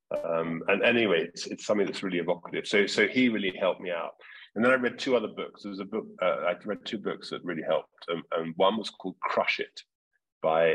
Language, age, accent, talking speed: English, 40-59, British, 240 wpm